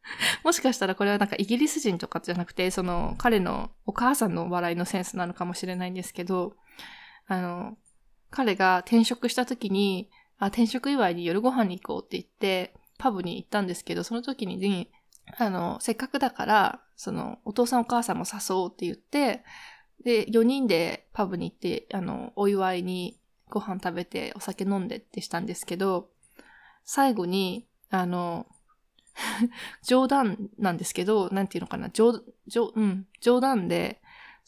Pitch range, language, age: 185-240 Hz, Japanese, 20-39